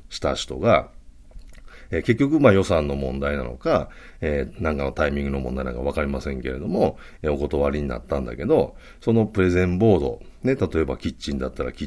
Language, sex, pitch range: Japanese, male, 65-110 Hz